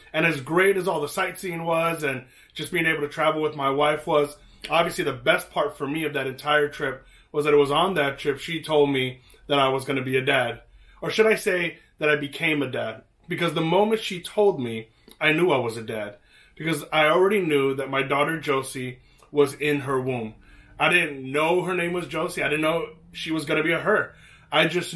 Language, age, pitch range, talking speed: English, 30-49, 135-160 Hz, 235 wpm